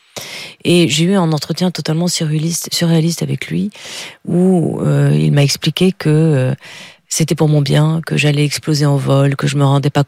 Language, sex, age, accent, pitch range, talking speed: French, female, 40-59, French, 145-175 Hz, 185 wpm